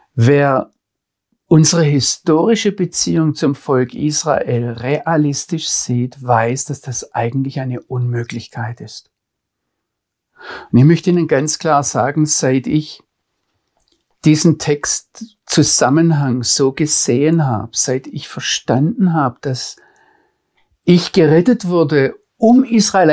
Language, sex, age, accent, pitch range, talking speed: German, male, 60-79, German, 130-170 Hz, 105 wpm